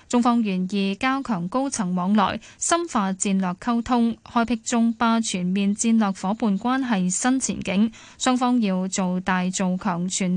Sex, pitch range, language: female, 190-240 Hz, Chinese